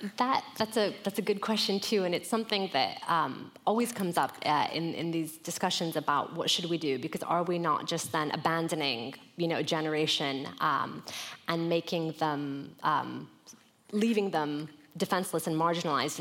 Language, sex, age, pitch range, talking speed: English, female, 20-39, 160-205 Hz, 175 wpm